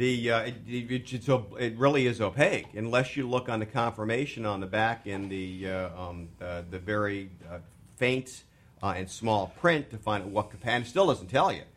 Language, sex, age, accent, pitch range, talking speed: English, male, 50-69, American, 95-120 Hz, 210 wpm